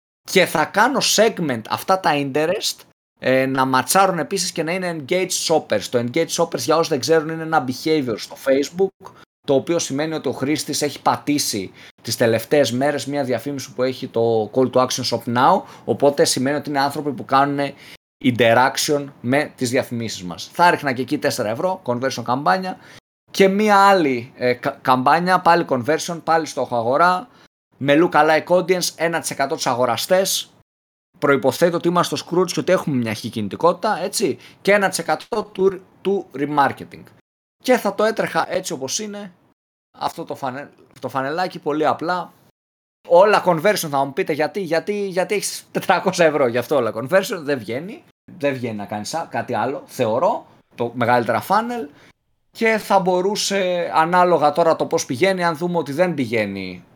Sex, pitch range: male, 130-180 Hz